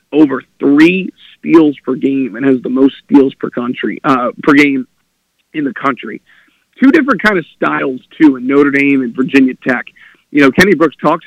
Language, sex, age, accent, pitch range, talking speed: English, male, 40-59, American, 140-215 Hz, 185 wpm